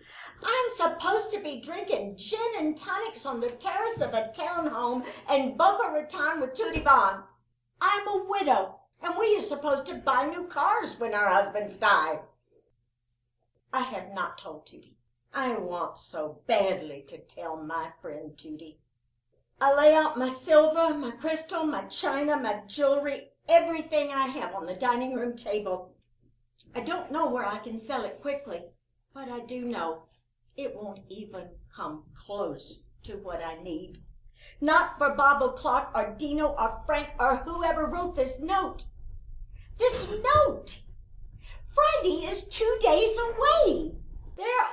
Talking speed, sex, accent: 150 wpm, female, American